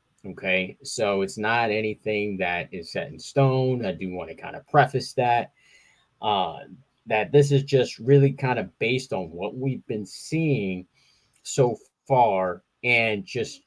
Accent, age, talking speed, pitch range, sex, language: American, 20-39, 160 wpm, 100-135 Hz, male, English